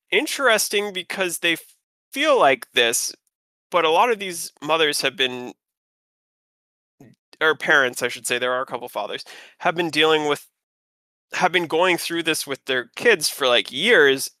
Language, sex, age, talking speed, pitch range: English, male, 20-39, 160 wpm, 130-170 Hz